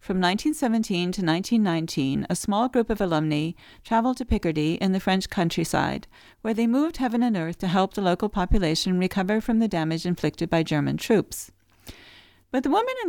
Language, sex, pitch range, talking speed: English, female, 155-225 Hz, 180 wpm